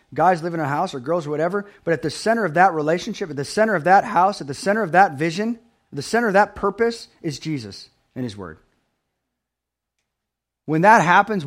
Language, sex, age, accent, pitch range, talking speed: English, male, 30-49, American, 155-195 Hz, 220 wpm